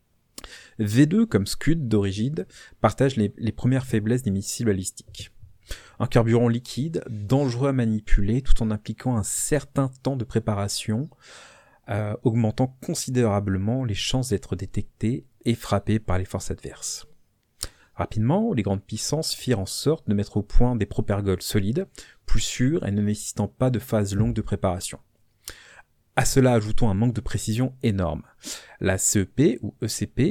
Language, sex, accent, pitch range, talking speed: French, male, French, 100-130 Hz, 150 wpm